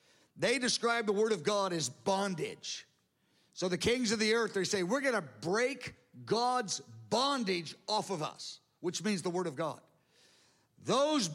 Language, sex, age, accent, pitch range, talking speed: English, male, 50-69, American, 180-245 Hz, 170 wpm